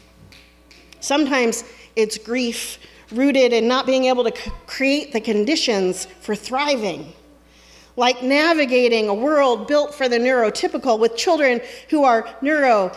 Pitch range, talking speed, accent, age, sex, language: 180-275 Hz, 125 wpm, American, 40-59, female, English